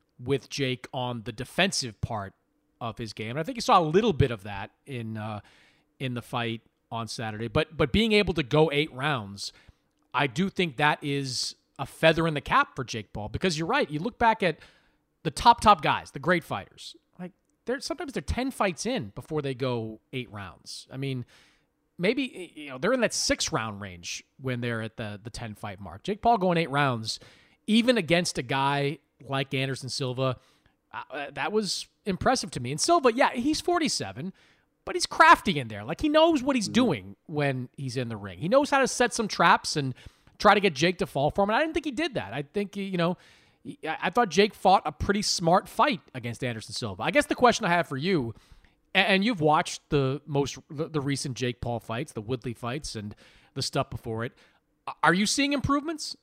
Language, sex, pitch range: English, male, 125-200 Hz